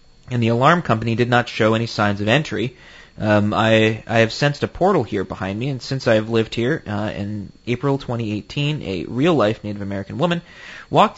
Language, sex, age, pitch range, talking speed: English, male, 30-49, 105-135 Hz, 200 wpm